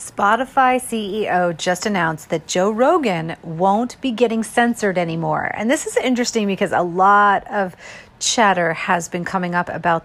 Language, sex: English, female